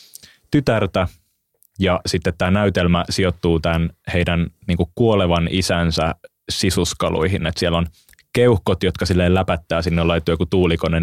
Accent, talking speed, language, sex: native, 130 wpm, Finnish, male